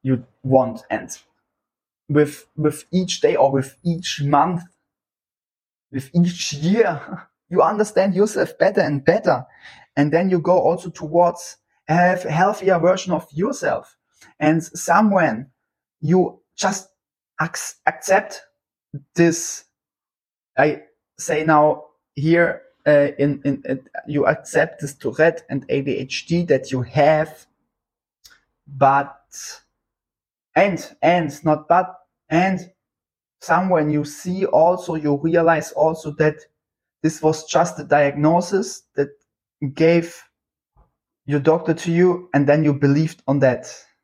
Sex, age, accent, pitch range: male, 20-39, German, 145-175 Hz